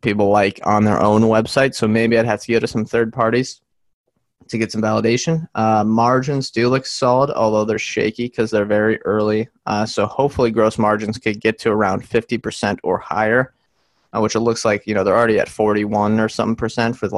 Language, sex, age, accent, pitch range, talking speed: English, male, 20-39, American, 105-120 Hz, 210 wpm